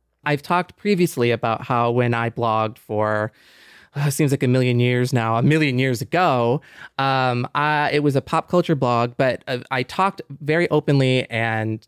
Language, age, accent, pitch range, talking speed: English, 20-39, American, 120-155 Hz, 170 wpm